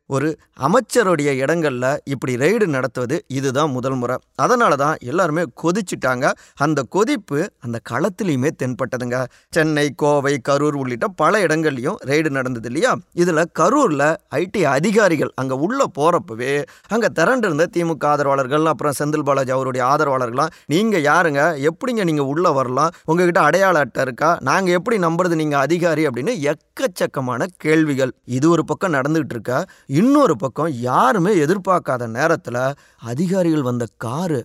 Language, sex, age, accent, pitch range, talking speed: Tamil, male, 20-39, native, 130-170 Hz, 130 wpm